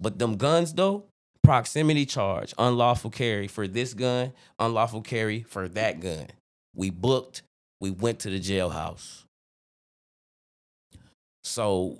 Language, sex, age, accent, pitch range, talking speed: English, male, 20-39, American, 105-125 Hz, 120 wpm